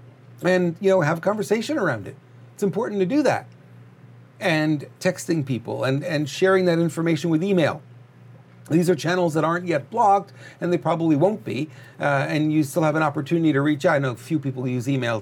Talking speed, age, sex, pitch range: 205 wpm, 40-59, male, 130-165 Hz